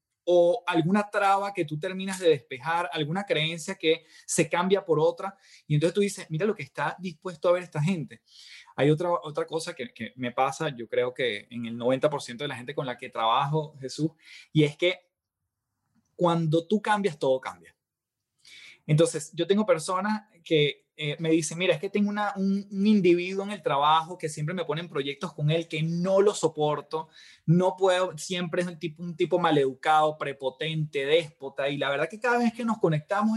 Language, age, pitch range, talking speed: Spanish, 20-39, 150-190 Hz, 195 wpm